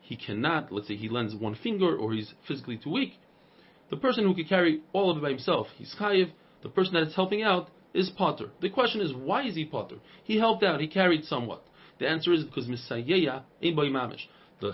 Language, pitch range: English, 145-195 Hz